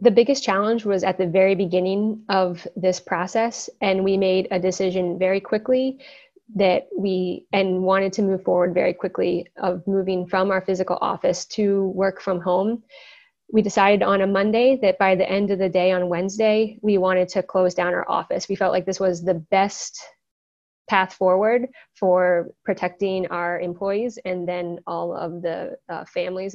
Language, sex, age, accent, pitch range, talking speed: English, female, 20-39, American, 185-215 Hz, 175 wpm